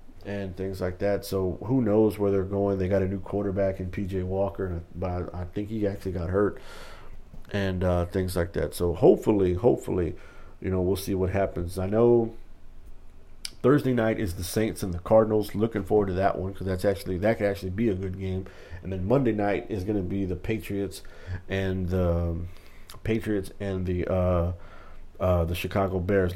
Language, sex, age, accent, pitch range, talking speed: English, male, 50-69, American, 90-105 Hz, 195 wpm